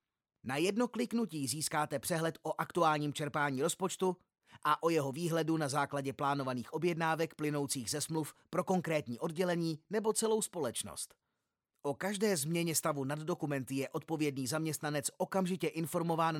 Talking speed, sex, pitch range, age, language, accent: 135 wpm, male, 140-175 Hz, 30-49, Czech, native